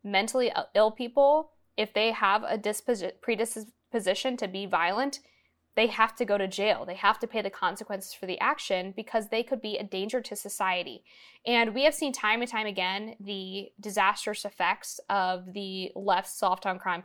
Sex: female